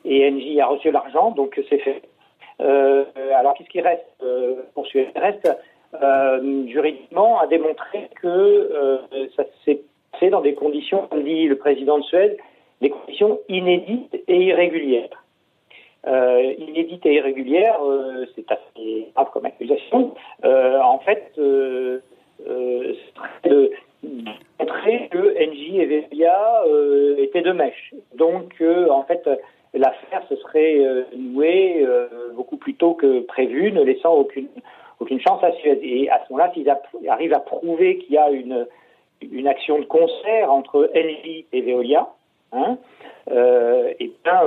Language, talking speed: French, 150 wpm